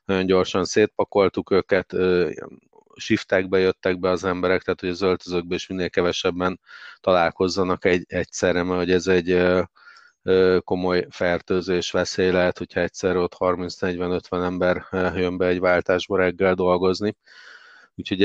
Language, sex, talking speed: Hungarian, male, 125 wpm